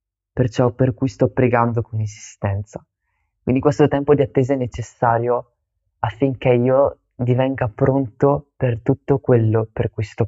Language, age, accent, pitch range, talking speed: Italian, 20-39, native, 110-130 Hz, 140 wpm